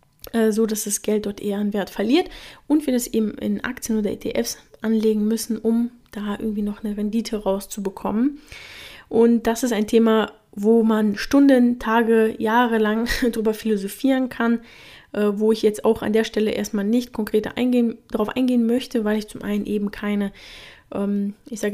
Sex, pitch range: female, 205-230 Hz